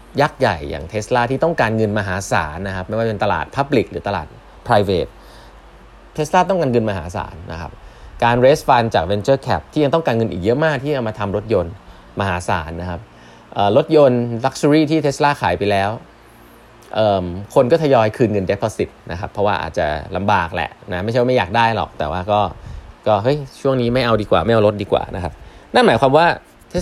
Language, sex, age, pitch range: Thai, male, 20-39, 100-130 Hz